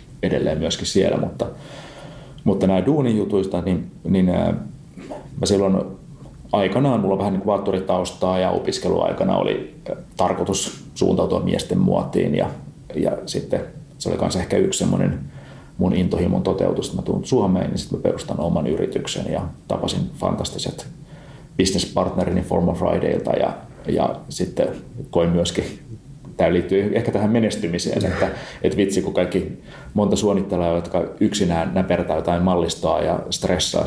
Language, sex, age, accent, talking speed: English, male, 30-49, Finnish, 130 wpm